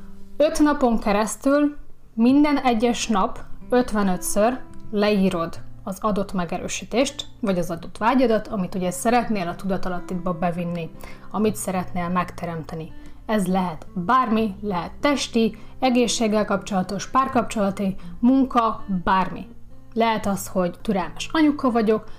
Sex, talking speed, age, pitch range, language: female, 110 wpm, 30-49, 185-240 Hz, Hungarian